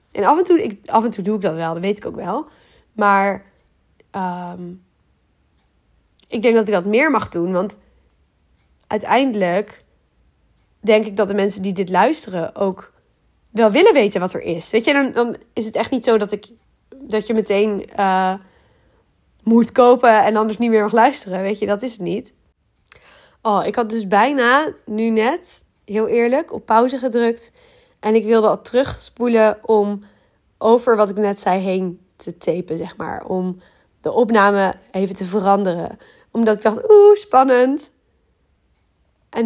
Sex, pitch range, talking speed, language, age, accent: female, 185-235 Hz, 170 wpm, Dutch, 20-39, Dutch